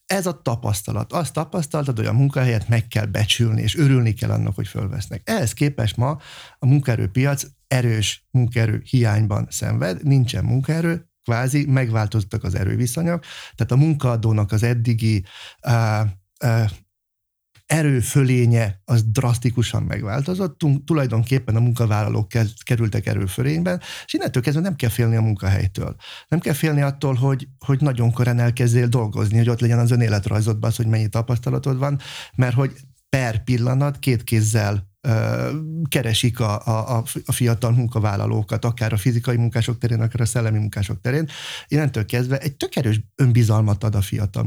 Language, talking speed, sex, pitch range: Hungarian, 145 wpm, male, 110-130 Hz